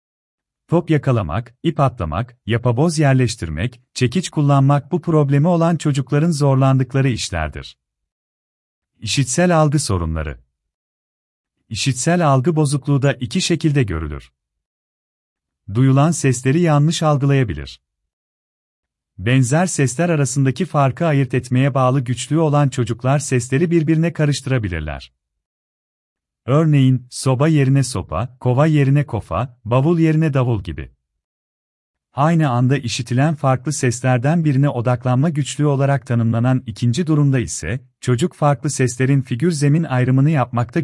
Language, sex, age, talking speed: Turkish, male, 40-59, 105 wpm